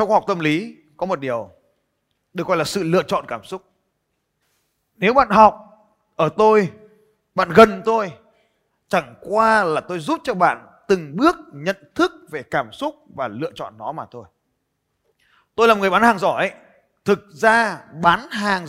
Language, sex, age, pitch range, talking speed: Vietnamese, male, 30-49, 165-230 Hz, 170 wpm